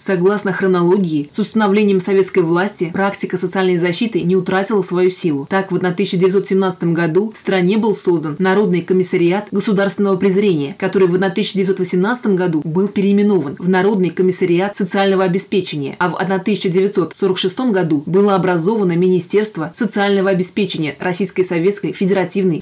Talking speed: 130 wpm